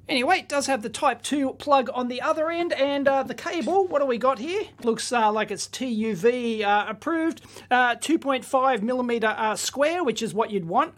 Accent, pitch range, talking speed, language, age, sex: Australian, 210-285 Hz, 210 wpm, English, 40-59, male